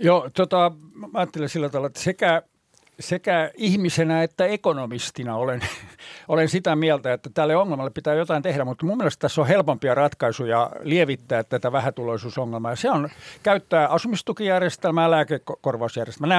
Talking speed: 145 wpm